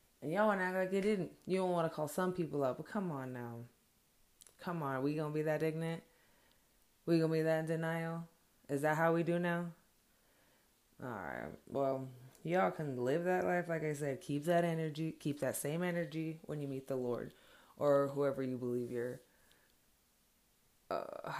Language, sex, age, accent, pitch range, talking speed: English, female, 20-39, American, 140-180 Hz, 195 wpm